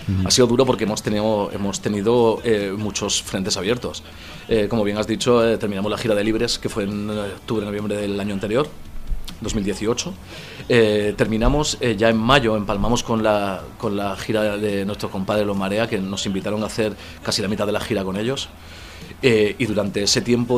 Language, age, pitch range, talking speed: Spanish, 30-49, 100-115 Hz, 190 wpm